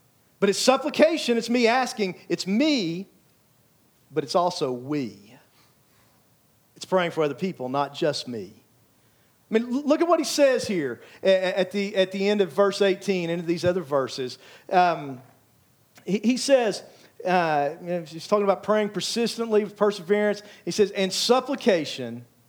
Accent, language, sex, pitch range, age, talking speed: American, English, male, 160-205 Hz, 50-69, 150 wpm